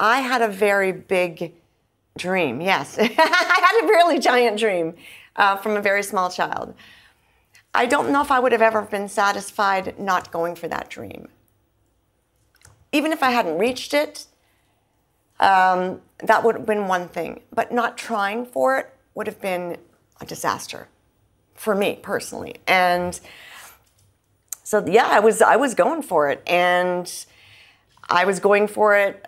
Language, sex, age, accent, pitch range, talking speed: English, female, 50-69, American, 190-235 Hz, 155 wpm